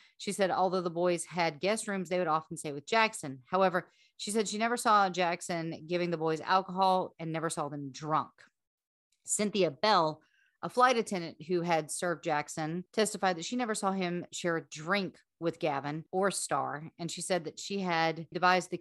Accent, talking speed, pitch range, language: American, 190 wpm, 160-190 Hz, English